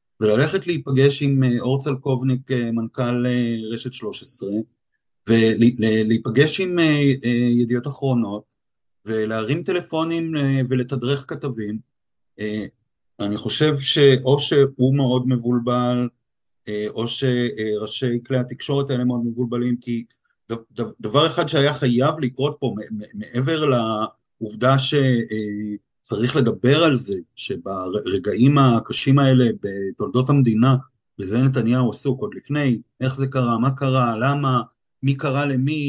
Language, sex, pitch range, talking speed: Hebrew, male, 115-140 Hz, 105 wpm